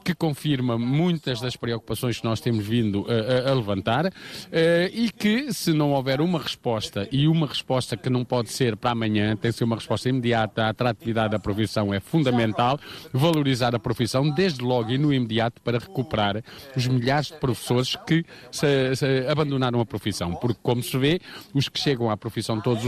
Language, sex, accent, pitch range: Portuguese, male, Brazilian, 125-170 Hz